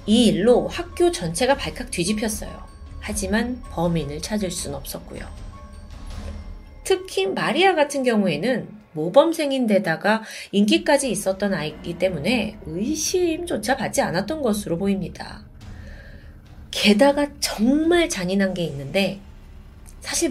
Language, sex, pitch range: Korean, female, 170-275 Hz